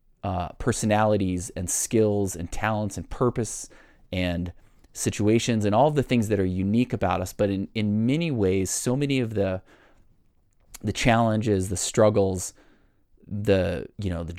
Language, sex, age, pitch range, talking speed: English, male, 20-39, 95-115 Hz, 150 wpm